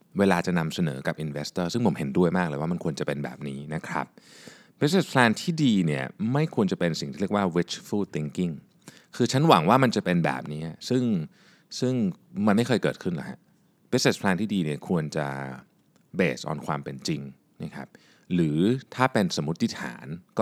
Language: Thai